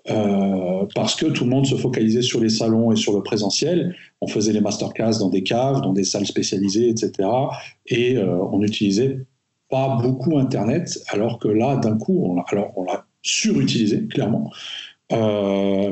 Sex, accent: male, French